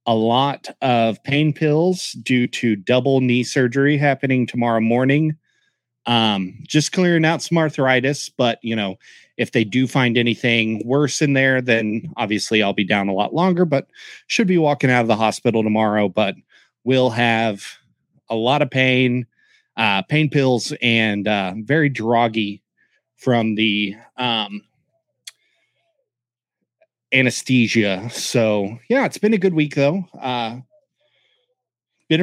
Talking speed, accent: 140 wpm, American